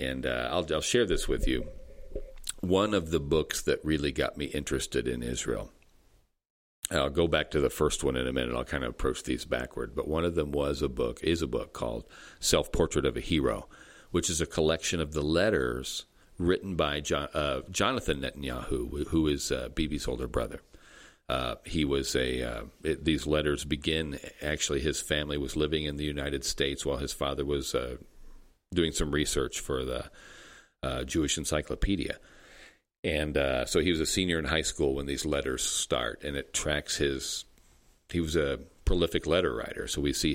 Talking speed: 190 wpm